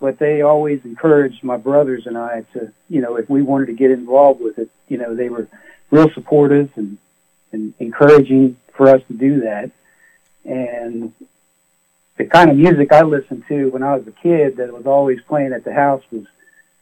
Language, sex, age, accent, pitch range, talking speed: English, male, 60-79, American, 115-140 Hz, 195 wpm